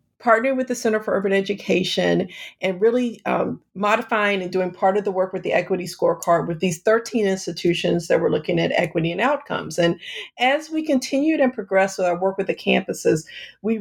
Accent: American